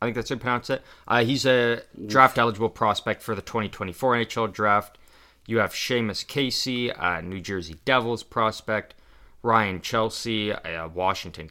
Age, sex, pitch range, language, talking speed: 20-39, male, 90-115 Hz, English, 155 wpm